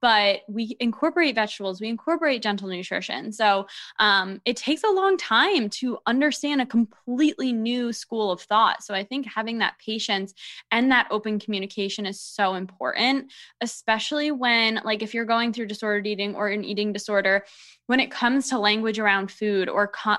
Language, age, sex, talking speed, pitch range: English, 10-29, female, 170 wpm, 205-260 Hz